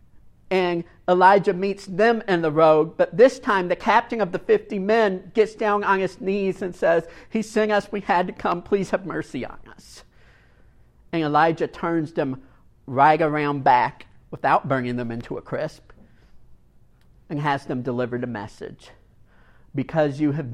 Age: 50-69